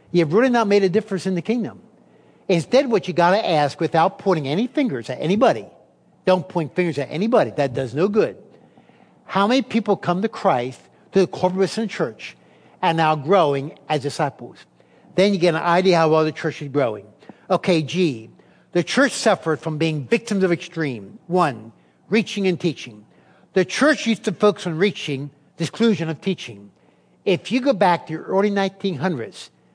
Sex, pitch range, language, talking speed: male, 150-200 Hz, English, 180 wpm